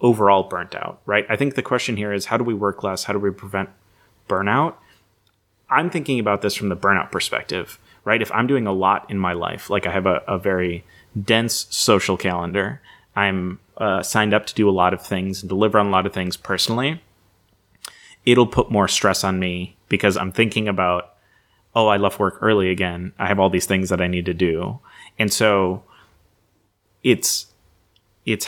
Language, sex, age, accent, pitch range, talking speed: English, male, 30-49, American, 95-110 Hz, 200 wpm